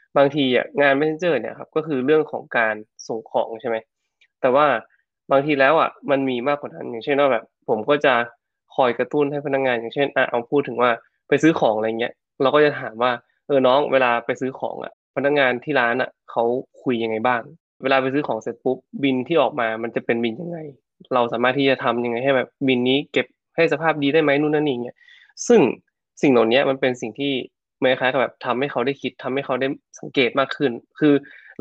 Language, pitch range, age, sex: Thai, 120-140 Hz, 20-39, male